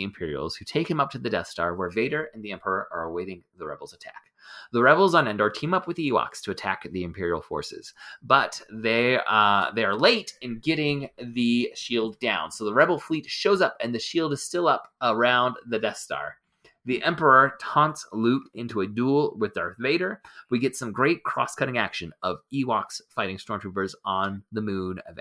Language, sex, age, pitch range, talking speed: English, male, 30-49, 100-140 Hz, 200 wpm